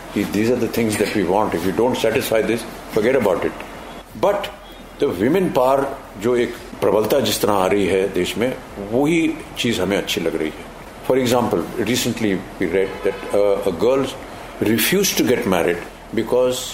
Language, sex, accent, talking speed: Hindi, male, native, 175 wpm